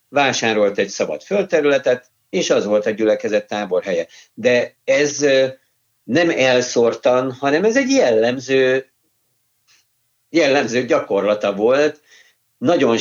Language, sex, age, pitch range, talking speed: Hungarian, male, 50-69, 110-135 Hz, 100 wpm